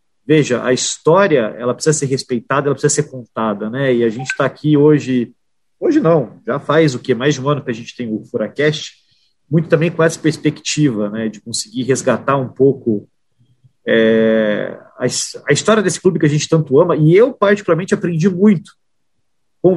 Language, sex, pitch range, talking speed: Portuguese, male, 130-170 Hz, 190 wpm